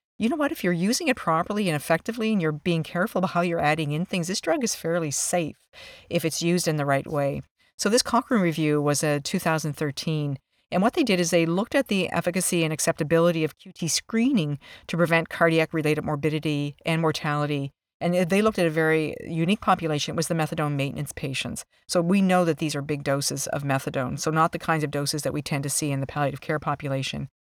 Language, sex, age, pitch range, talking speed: English, female, 50-69, 155-180 Hz, 220 wpm